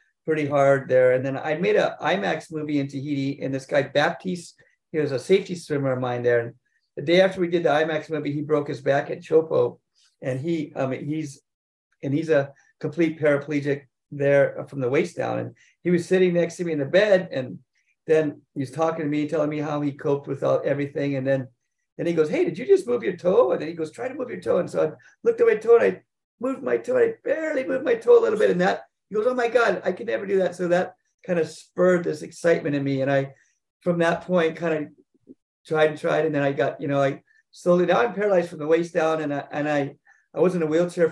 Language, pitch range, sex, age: English, 140-180 Hz, male, 50-69